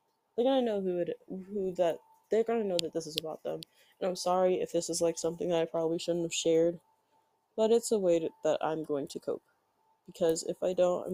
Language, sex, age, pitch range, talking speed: English, female, 20-39, 175-250 Hz, 235 wpm